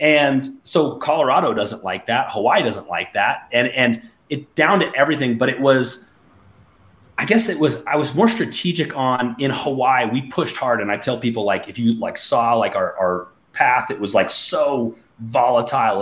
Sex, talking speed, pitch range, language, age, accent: male, 190 wpm, 120-150 Hz, English, 30-49, American